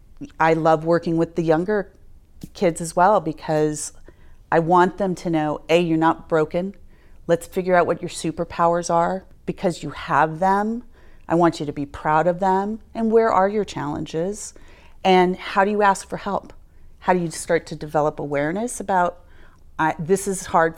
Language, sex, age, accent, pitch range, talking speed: English, female, 30-49, American, 155-190 Hz, 180 wpm